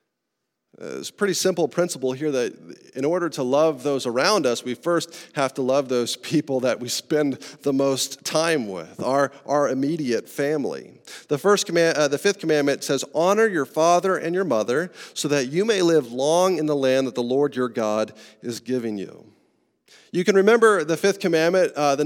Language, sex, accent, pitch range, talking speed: English, male, American, 135-175 Hz, 195 wpm